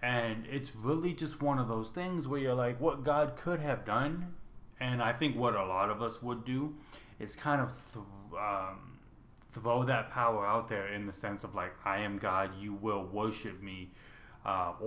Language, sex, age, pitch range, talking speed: English, male, 20-39, 100-130 Hz, 200 wpm